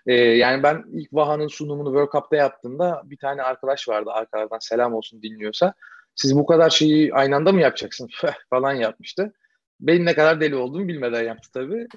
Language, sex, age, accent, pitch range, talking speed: Turkish, male, 40-59, native, 130-180 Hz, 175 wpm